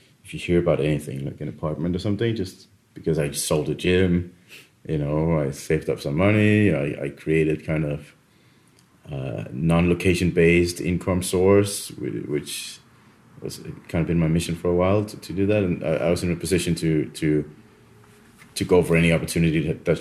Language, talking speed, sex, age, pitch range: English, 180 wpm, male, 30-49, 80-100 Hz